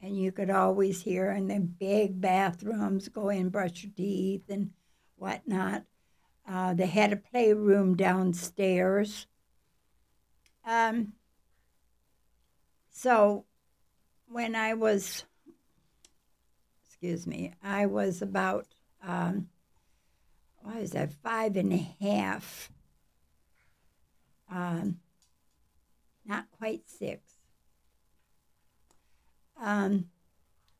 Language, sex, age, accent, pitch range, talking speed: English, female, 60-79, American, 180-230 Hz, 90 wpm